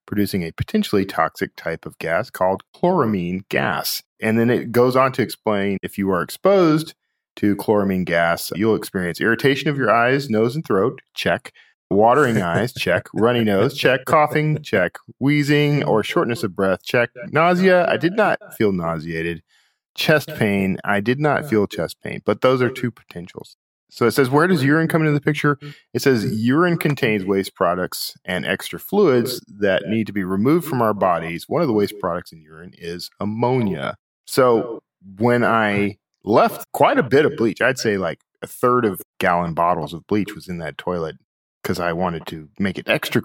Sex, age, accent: male, 40-59, American